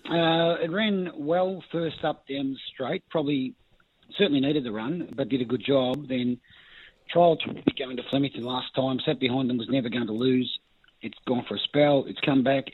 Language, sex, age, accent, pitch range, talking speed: English, male, 40-59, Australian, 120-145 Hz, 205 wpm